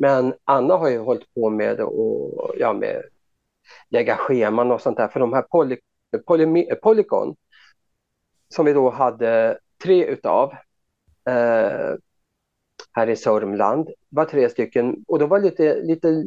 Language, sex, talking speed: Swedish, male, 150 wpm